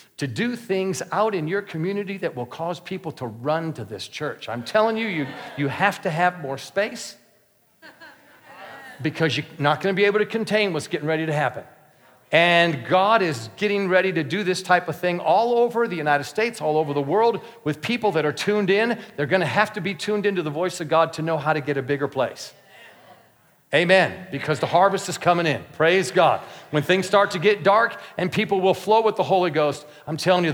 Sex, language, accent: male, English, American